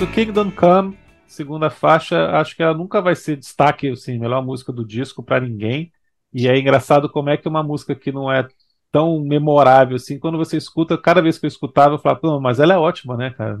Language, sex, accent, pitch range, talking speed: Portuguese, male, Brazilian, 125-160 Hz, 215 wpm